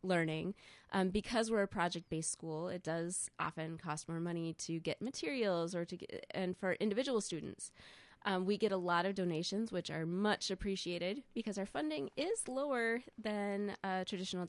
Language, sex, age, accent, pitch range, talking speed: English, female, 20-39, American, 170-205 Hz, 175 wpm